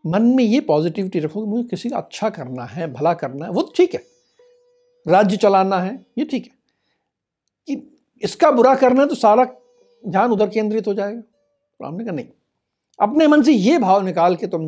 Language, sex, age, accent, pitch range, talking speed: Hindi, male, 60-79, native, 165-275 Hz, 185 wpm